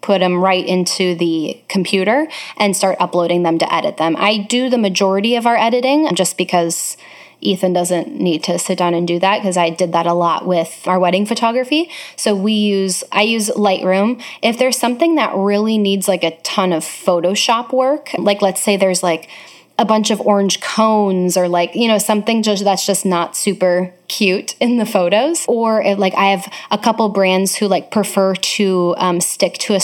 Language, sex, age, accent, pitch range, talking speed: English, female, 10-29, American, 180-210 Hz, 195 wpm